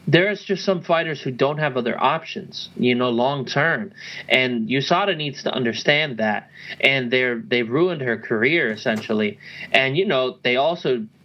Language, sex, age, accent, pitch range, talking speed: English, male, 30-49, American, 130-165 Hz, 160 wpm